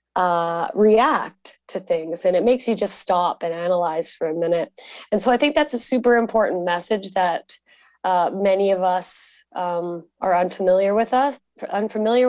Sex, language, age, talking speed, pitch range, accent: female, English, 20-39, 170 wpm, 170-205 Hz, American